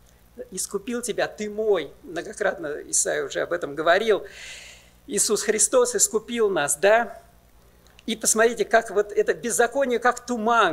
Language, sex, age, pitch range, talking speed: Russian, male, 50-69, 205-255 Hz, 130 wpm